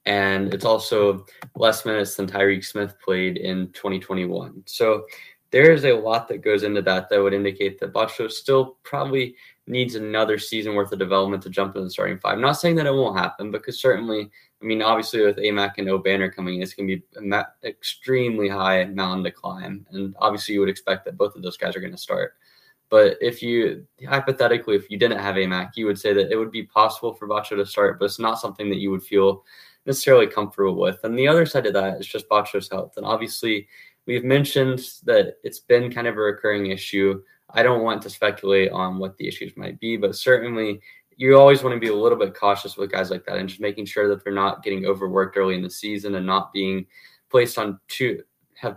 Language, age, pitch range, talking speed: English, 10-29, 95-120 Hz, 220 wpm